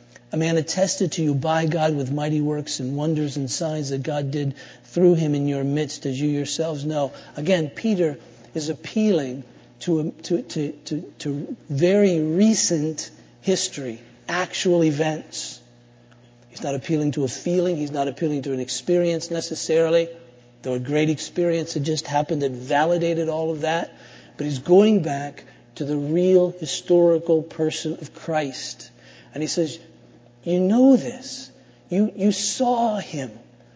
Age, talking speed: 50-69, 150 wpm